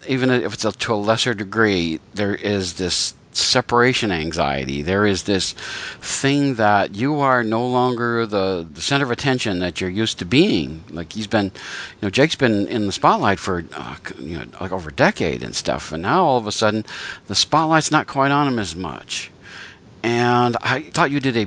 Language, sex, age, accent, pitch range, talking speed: English, male, 50-69, American, 95-130 Hz, 200 wpm